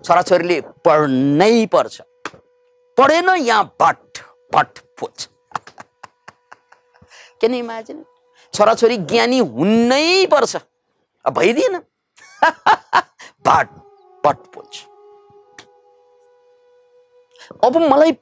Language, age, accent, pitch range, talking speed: English, 50-69, Indian, 245-370 Hz, 60 wpm